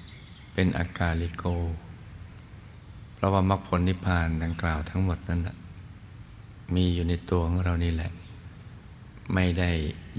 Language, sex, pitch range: Thai, male, 85-105 Hz